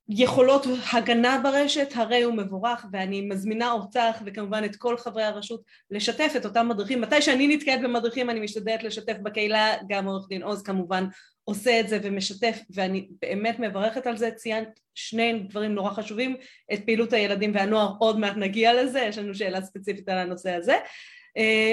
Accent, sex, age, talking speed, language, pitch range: native, female, 20-39, 170 wpm, Hebrew, 205-265 Hz